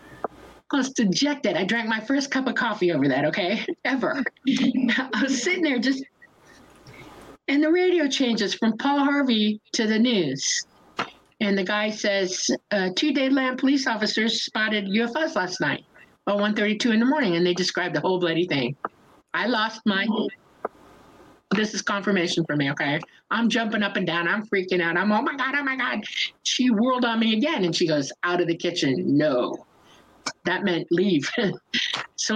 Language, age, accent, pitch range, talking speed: English, 50-69, American, 185-255 Hz, 175 wpm